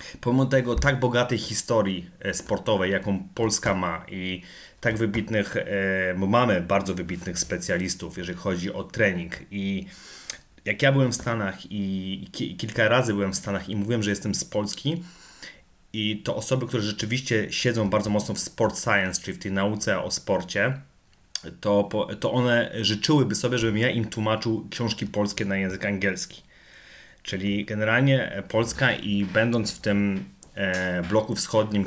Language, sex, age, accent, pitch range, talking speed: Polish, male, 30-49, native, 100-115 Hz, 150 wpm